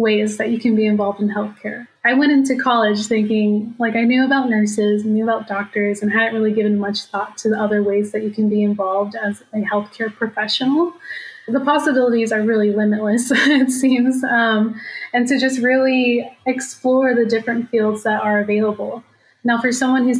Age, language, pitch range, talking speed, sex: 10-29, English, 215-240 Hz, 185 wpm, female